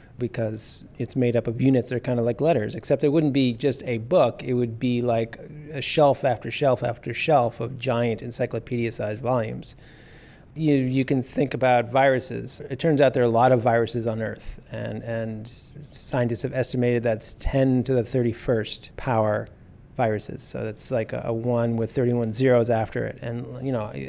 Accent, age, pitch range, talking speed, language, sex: American, 30-49, 115-135 Hz, 190 wpm, English, male